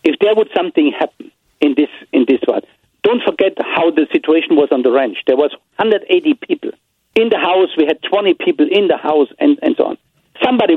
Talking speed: 210 wpm